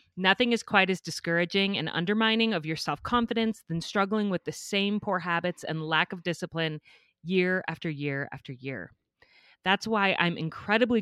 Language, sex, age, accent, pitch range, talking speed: English, female, 30-49, American, 155-195 Hz, 165 wpm